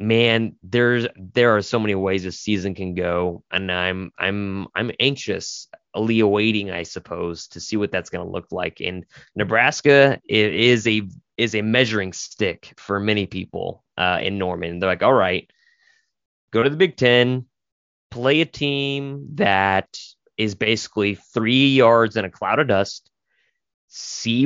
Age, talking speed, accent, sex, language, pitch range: 20-39, 160 wpm, American, male, English, 95-120 Hz